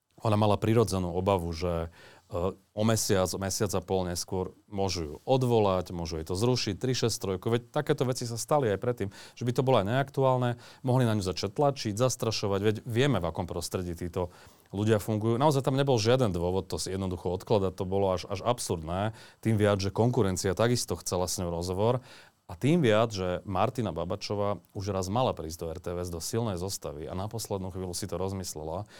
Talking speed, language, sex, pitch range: 190 wpm, Slovak, male, 90-115 Hz